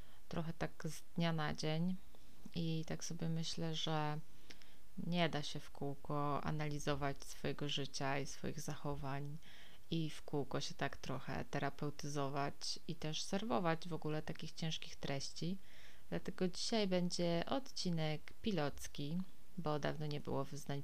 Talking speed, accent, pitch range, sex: 135 wpm, native, 145-180 Hz, female